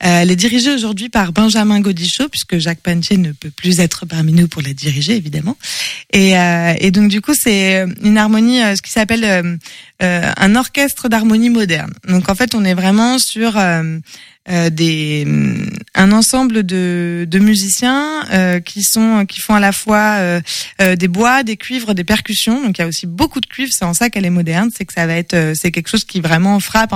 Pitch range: 180-225 Hz